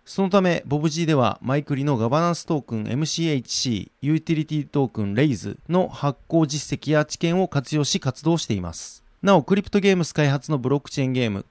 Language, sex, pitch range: Japanese, male, 125-155 Hz